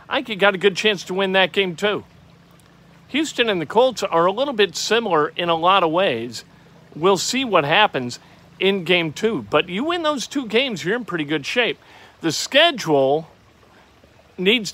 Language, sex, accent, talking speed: English, male, American, 185 wpm